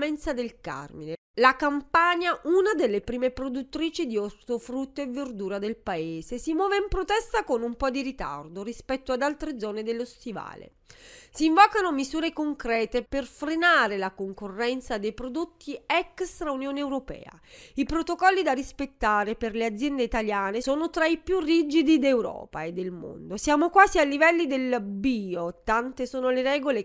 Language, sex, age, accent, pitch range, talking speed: Italian, female, 30-49, native, 225-320 Hz, 155 wpm